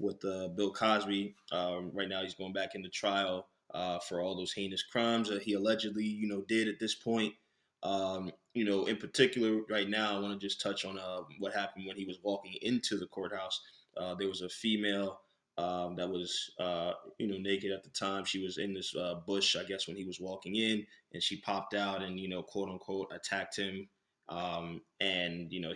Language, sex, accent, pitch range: English, male, American, 90-105 Hz